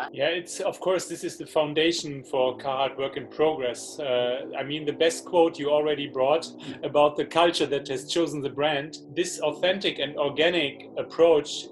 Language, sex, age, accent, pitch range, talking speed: English, male, 30-49, German, 140-165 Hz, 180 wpm